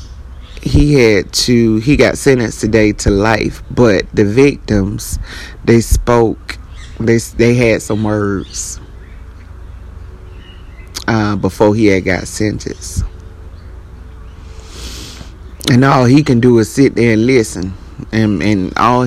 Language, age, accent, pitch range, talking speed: English, 30-49, American, 80-125 Hz, 120 wpm